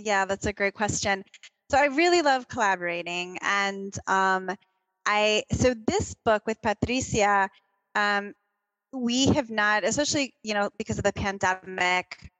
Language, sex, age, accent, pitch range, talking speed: English, female, 20-39, American, 200-245 Hz, 140 wpm